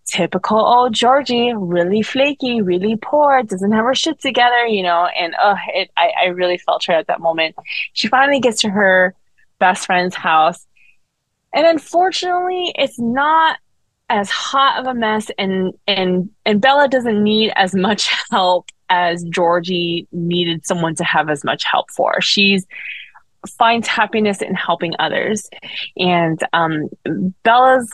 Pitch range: 185-240 Hz